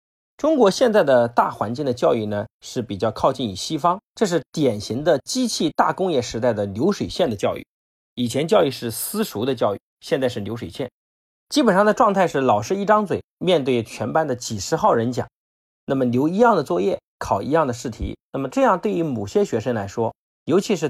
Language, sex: Chinese, male